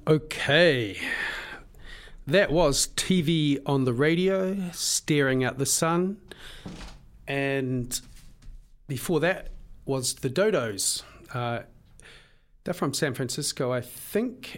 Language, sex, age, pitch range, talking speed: English, male, 40-59, 130-175 Hz, 100 wpm